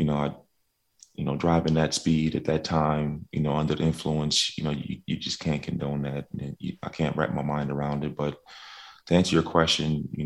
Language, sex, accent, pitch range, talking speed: English, male, American, 75-80 Hz, 230 wpm